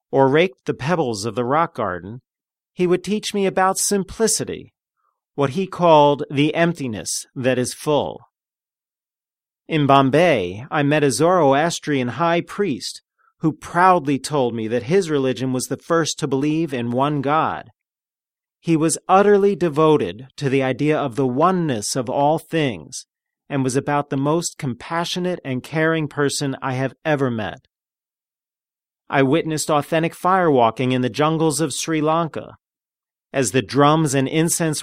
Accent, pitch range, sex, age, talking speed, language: American, 130-160 Hz, male, 40-59, 150 wpm, English